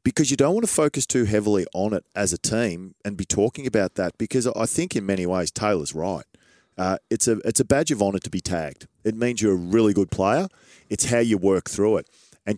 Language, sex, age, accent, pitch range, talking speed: English, male, 30-49, Australian, 95-120 Hz, 245 wpm